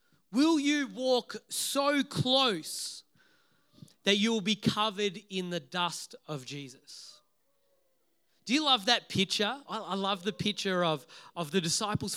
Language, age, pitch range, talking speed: English, 30-49, 170-240 Hz, 140 wpm